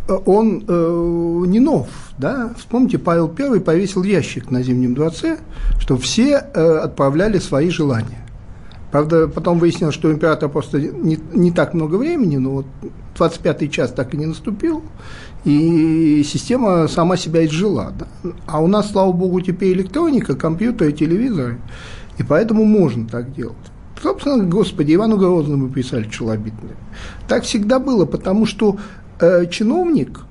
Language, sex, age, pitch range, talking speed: Russian, male, 50-69, 155-230 Hz, 140 wpm